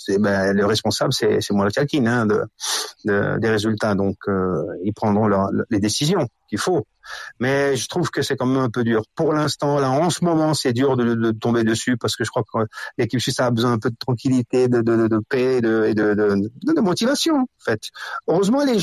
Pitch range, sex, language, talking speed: 110-155 Hz, male, French, 235 wpm